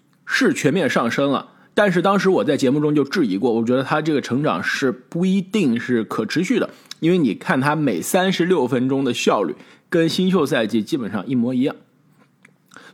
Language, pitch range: Chinese, 150-230 Hz